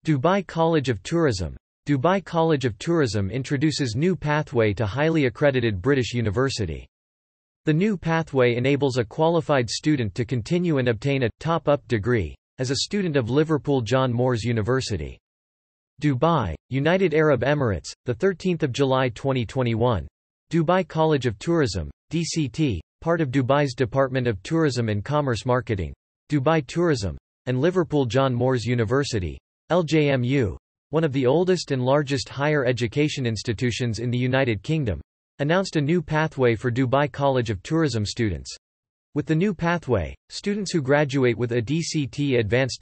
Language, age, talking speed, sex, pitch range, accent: English, 40-59, 145 wpm, male, 115-150 Hz, American